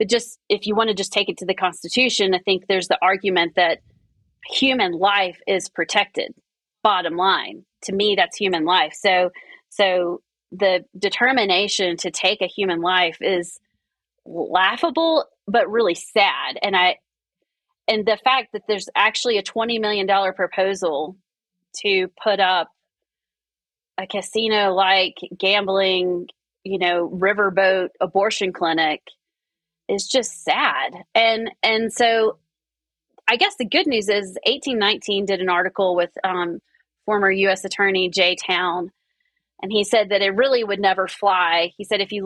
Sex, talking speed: female, 150 wpm